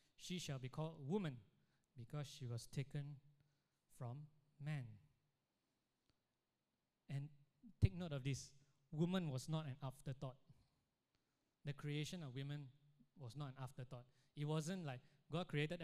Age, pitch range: 20-39, 130-150 Hz